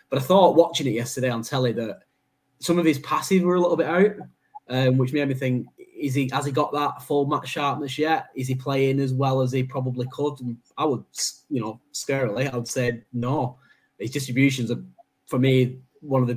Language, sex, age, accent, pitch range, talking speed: English, male, 10-29, British, 115-135 Hz, 220 wpm